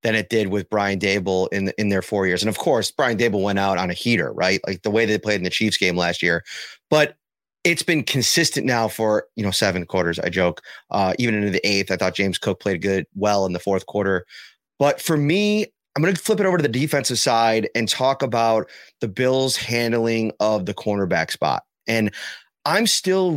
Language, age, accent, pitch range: English, 30-49, American, 105-150 Hz